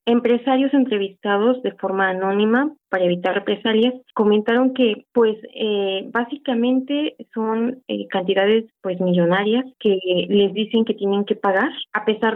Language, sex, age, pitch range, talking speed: Spanish, female, 20-39, 195-245 Hz, 130 wpm